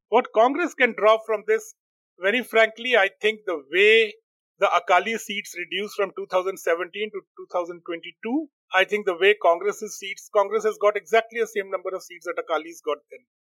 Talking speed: 175 wpm